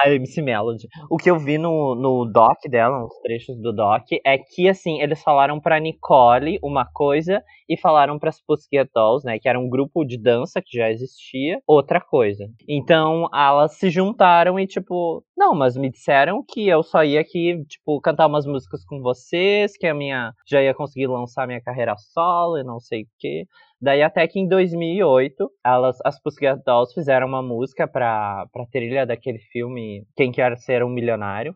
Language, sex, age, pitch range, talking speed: Portuguese, male, 20-39, 125-160 Hz, 185 wpm